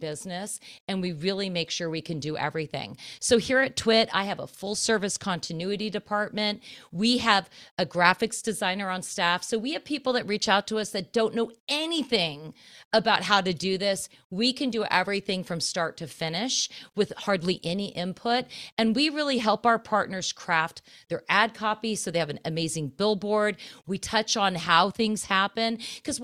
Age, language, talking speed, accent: 40-59, English, 185 wpm, American